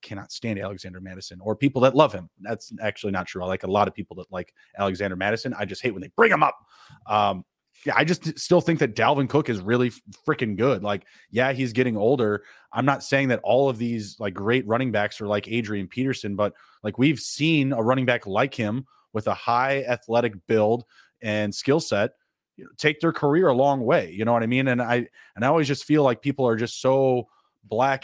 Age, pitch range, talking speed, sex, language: 30-49, 105-135 Hz, 225 wpm, male, English